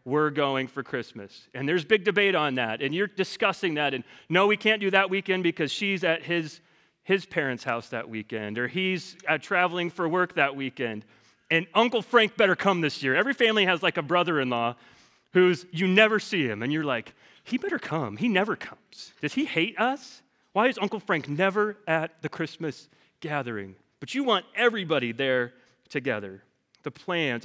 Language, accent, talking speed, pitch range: English, American, 185 wpm, 145-210 Hz